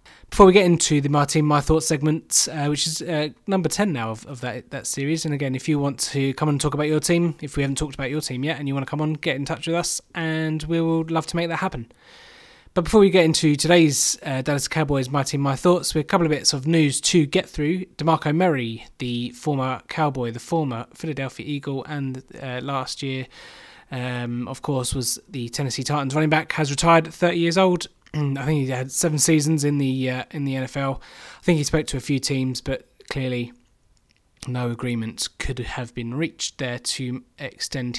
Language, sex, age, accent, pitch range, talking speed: English, male, 20-39, British, 130-160 Hz, 225 wpm